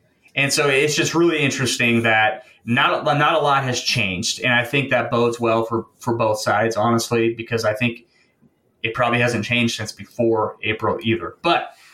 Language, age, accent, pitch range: English, 30-49, American, 125-165 Hz